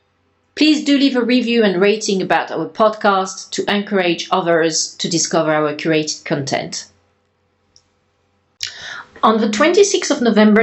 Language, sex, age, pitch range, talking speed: English, female, 40-59, 165-215 Hz, 130 wpm